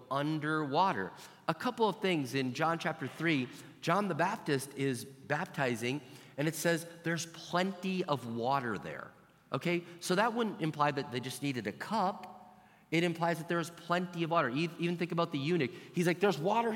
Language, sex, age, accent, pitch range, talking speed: English, male, 40-59, American, 130-175 Hz, 180 wpm